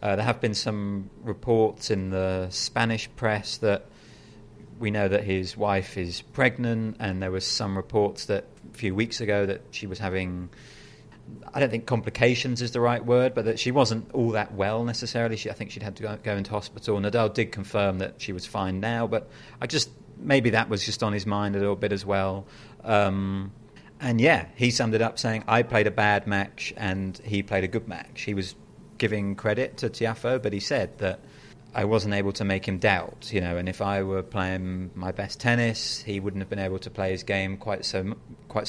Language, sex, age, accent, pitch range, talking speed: English, male, 40-59, British, 95-115 Hz, 215 wpm